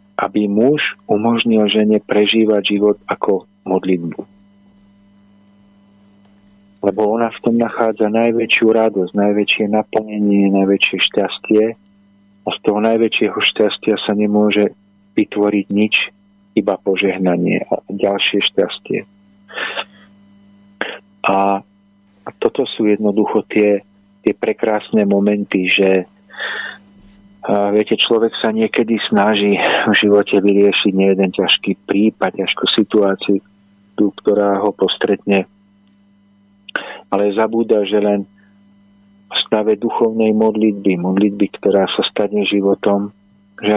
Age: 40-59